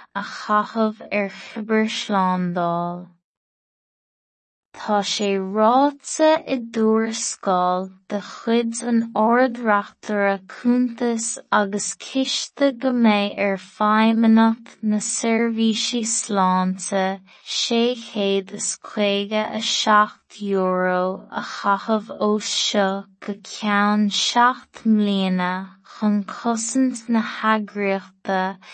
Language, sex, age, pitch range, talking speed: English, female, 20-39, 195-235 Hz, 70 wpm